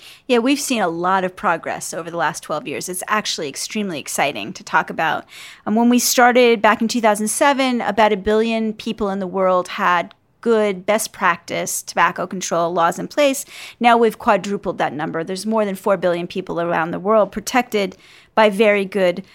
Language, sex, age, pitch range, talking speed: English, female, 40-59, 195-250 Hz, 185 wpm